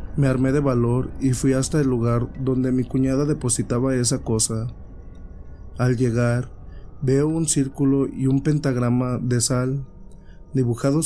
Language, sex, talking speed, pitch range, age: Spanish, male, 140 wpm, 115-135 Hz, 30-49